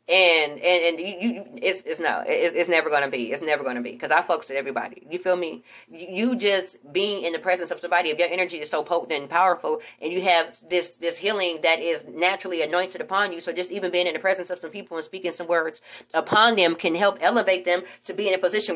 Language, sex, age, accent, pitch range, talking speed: English, female, 20-39, American, 175-225 Hz, 245 wpm